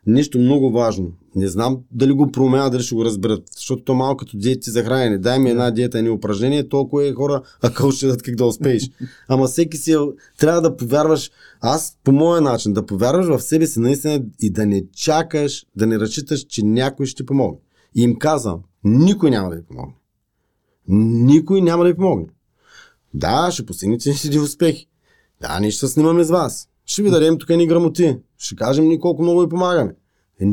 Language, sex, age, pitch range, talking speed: Bulgarian, male, 30-49, 120-165 Hz, 200 wpm